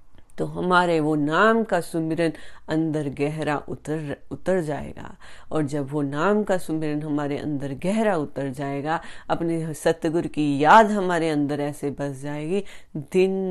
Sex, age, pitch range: female, 30-49, 150-195 Hz